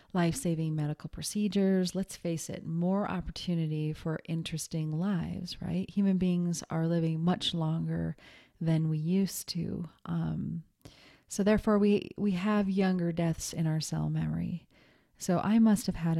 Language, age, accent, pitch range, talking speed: English, 30-49, American, 160-180 Hz, 145 wpm